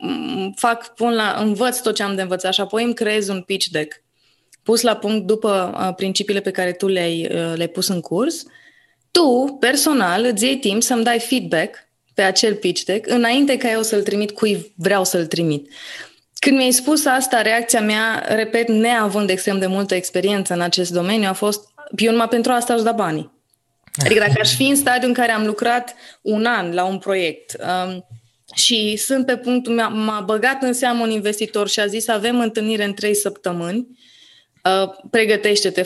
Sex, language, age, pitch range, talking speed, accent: female, Romanian, 20-39, 185-235 Hz, 185 wpm, native